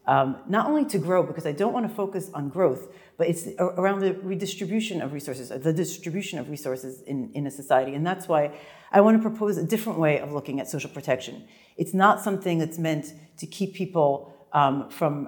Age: 40-59